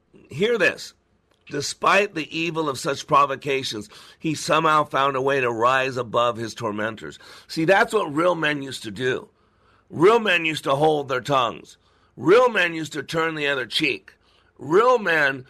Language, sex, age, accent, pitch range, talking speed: English, male, 50-69, American, 130-165 Hz, 165 wpm